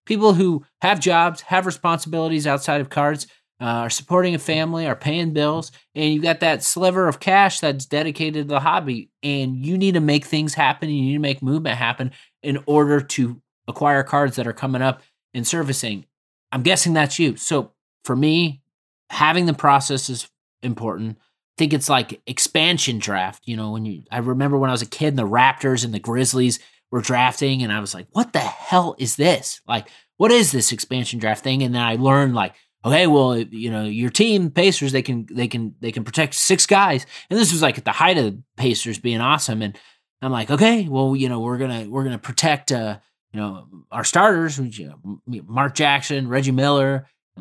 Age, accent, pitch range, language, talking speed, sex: 30-49, American, 120-160 Hz, English, 210 wpm, male